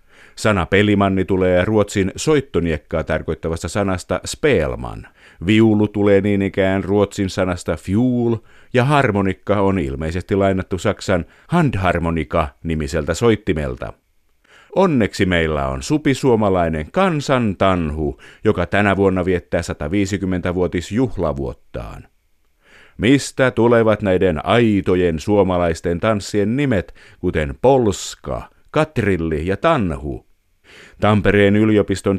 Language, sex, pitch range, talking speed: Finnish, male, 90-110 Hz, 95 wpm